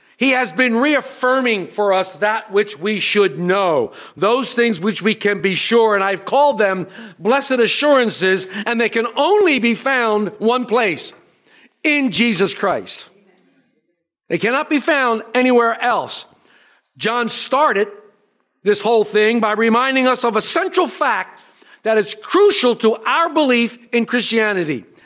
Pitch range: 205-305 Hz